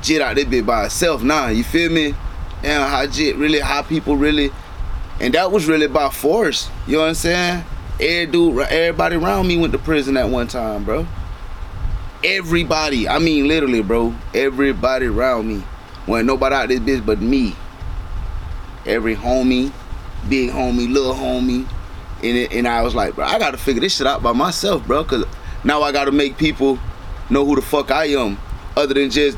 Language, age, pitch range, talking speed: English, 20-39, 110-160 Hz, 185 wpm